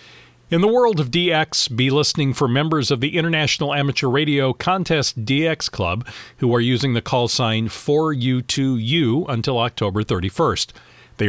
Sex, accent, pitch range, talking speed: male, American, 125-160 Hz, 150 wpm